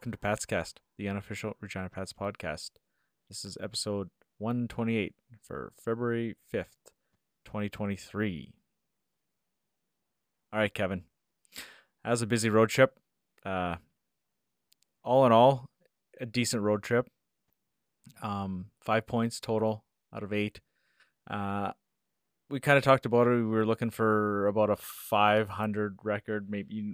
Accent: American